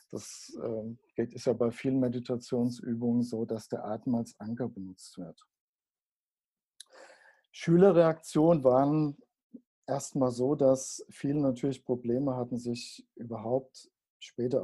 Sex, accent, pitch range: male, German, 120-140 Hz